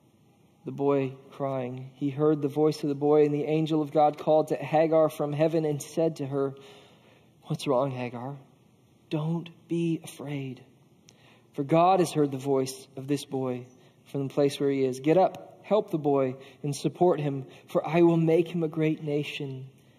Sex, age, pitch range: male, 40-59, 130-155 Hz